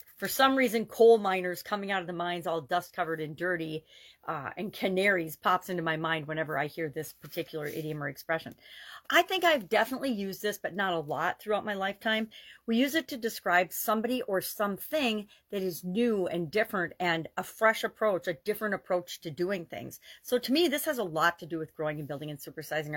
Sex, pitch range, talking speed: female, 170-225 Hz, 210 wpm